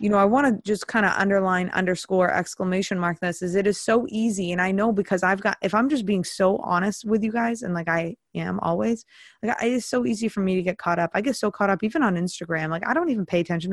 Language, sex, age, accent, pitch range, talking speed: English, female, 20-39, American, 175-220 Hz, 275 wpm